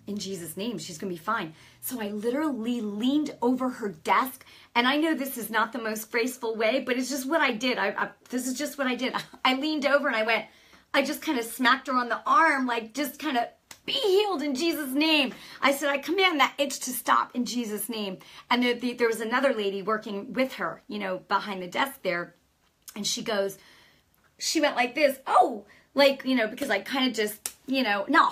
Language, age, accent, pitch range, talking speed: English, 40-59, American, 200-270 Hz, 230 wpm